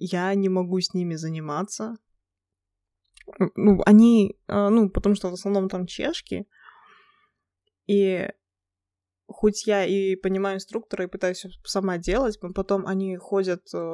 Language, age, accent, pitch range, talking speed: Russian, 20-39, native, 170-200 Hz, 125 wpm